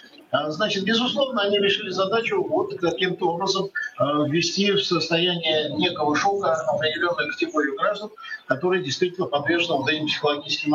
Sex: male